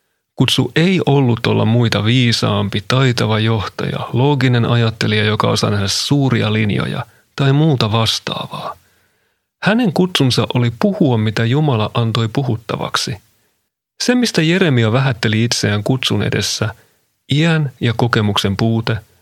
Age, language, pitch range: 40-59, Finnish, 115-150 Hz